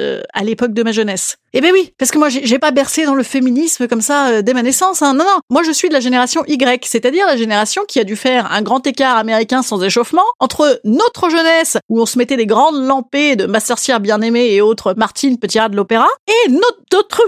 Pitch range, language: 230-320 Hz, French